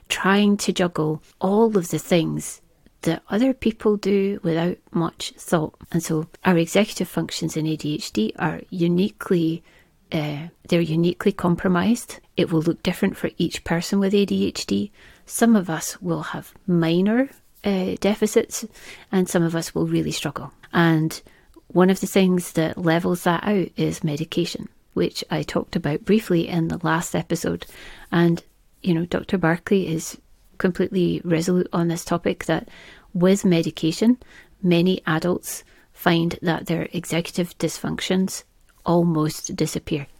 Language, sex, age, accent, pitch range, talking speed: English, female, 30-49, British, 160-190 Hz, 140 wpm